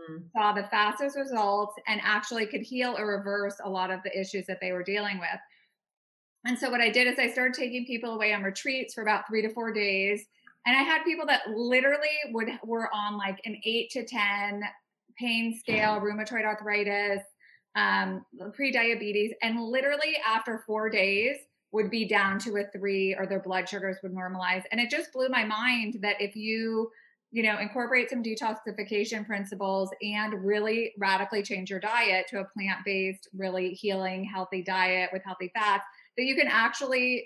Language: English